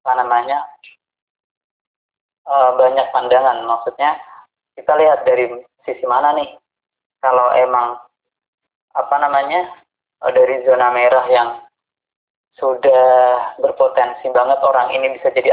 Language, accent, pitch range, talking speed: Indonesian, native, 120-140 Hz, 110 wpm